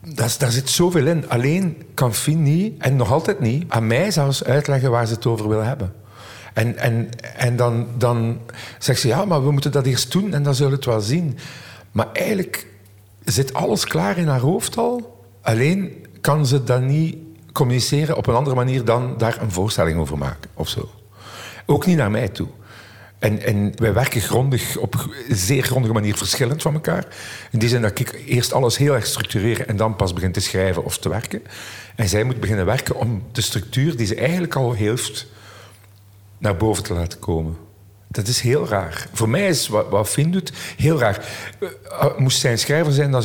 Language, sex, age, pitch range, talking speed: Dutch, male, 50-69, 110-135 Hz, 195 wpm